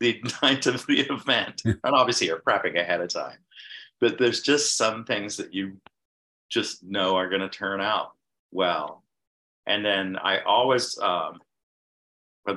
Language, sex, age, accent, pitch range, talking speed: English, male, 50-69, American, 90-110 Hz, 160 wpm